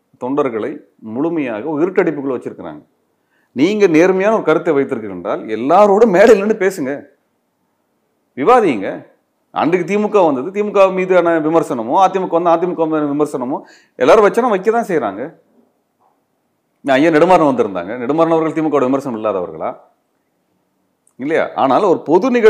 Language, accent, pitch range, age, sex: Tamil, native, 135-190 Hz, 30-49, male